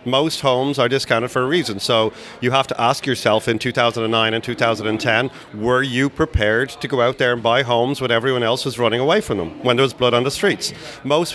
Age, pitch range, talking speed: 30-49, 120-140 Hz, 225 wpm